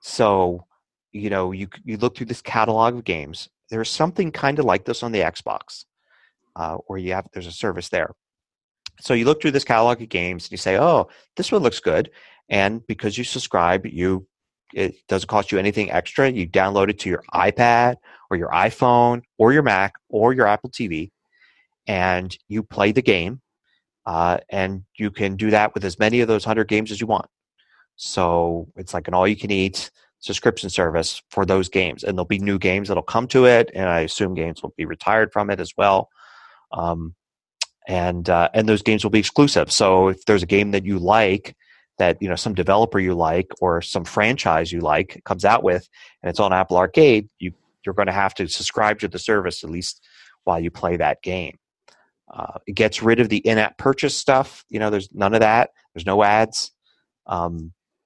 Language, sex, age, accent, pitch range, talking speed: English, male, 30-49, American, 90-115 Hz, 200 wpm